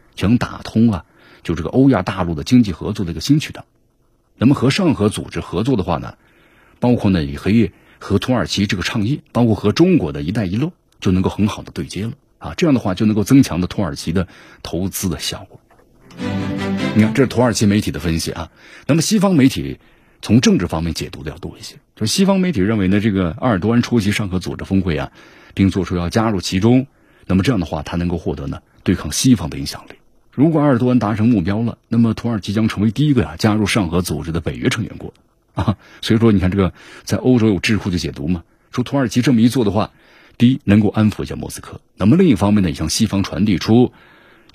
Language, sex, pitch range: Chinese, male, 90-120 Hz